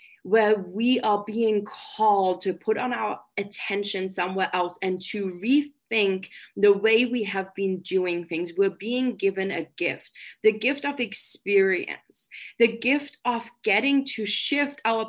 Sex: female